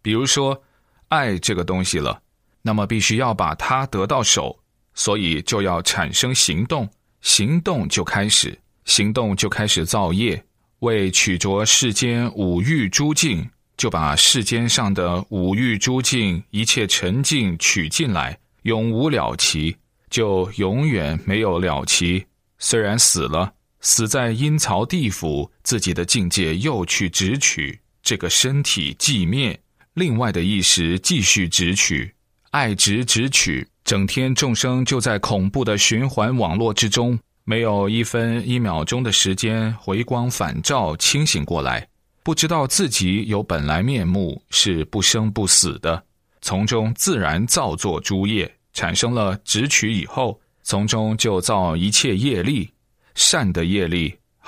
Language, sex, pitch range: Chinese, male, 95-120 Hz